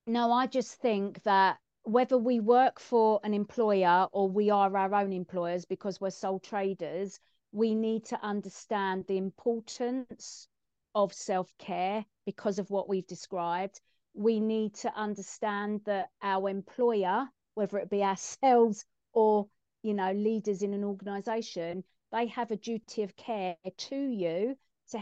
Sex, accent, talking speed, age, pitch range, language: female, British, 145 wpm, 40-59, 195-235 Hz, English